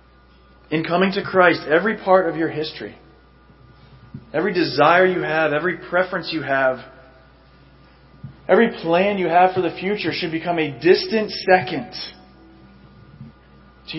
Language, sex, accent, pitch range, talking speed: English, male, American, 140-185 Hz, 130 wpm